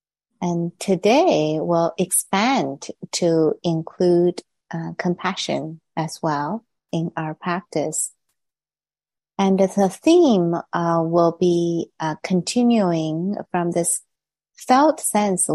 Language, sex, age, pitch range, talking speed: English, female, 30-49, 165-210 Hz, 95 wpm